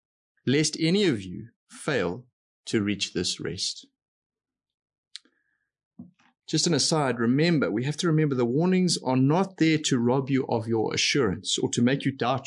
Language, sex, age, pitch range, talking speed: English, male, 30-49, 120-160 Hz, 160 wpm